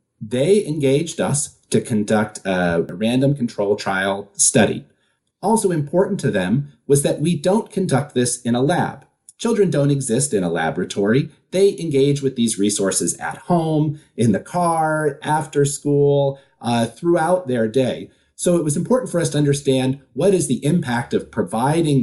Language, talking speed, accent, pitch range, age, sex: English, 160 wpm, American, 115-155 Hz, 40-59, male